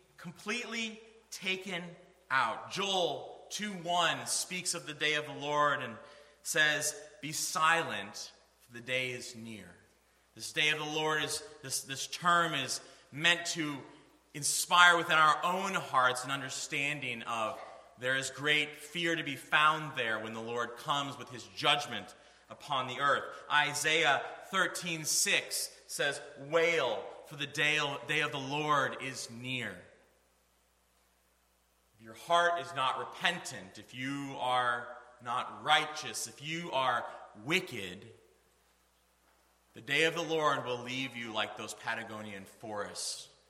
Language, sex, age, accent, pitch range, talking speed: English, male, 30-49, American, 110-165 Hz, 135 wpm